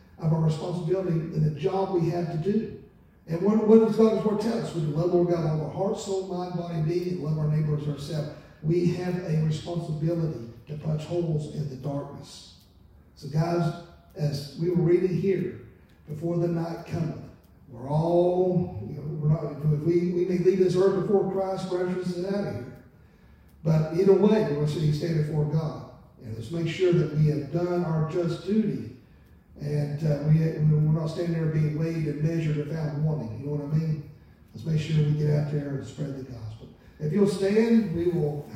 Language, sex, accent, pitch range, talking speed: English, male, American, 150-175 Hz, 195 wpm